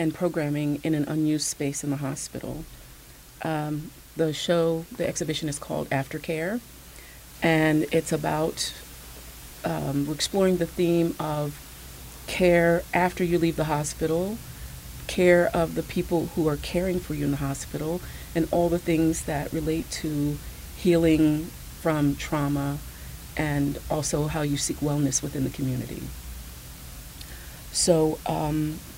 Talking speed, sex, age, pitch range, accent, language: 135 wpm, female, 40-59, 145-165 Hz, American, English